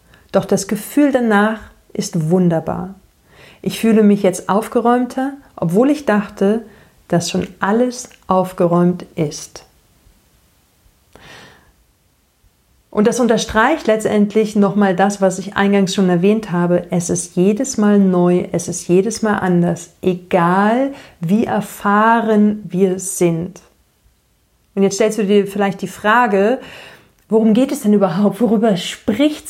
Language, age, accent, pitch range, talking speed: German, 50-69, German, 185-220 Hz, 125 wpm